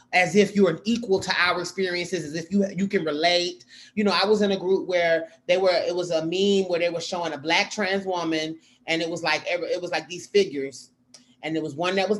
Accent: American